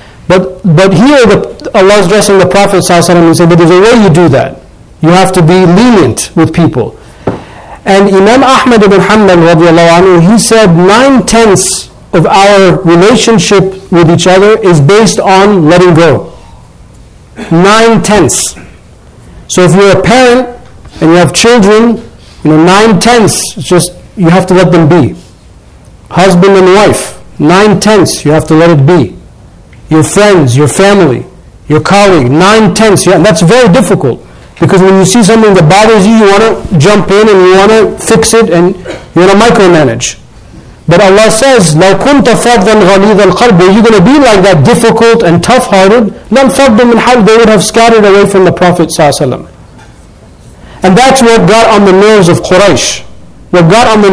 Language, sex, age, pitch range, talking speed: English, male, 60-79, 175-215 Hz, 170 wpm